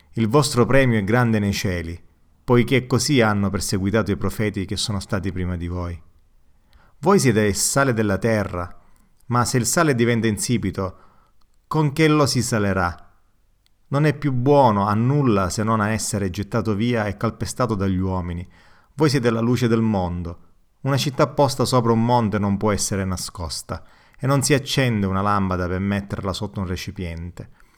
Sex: male